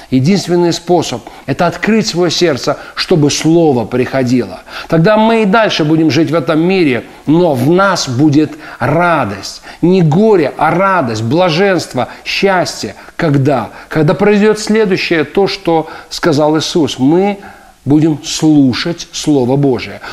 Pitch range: 135-180 Hz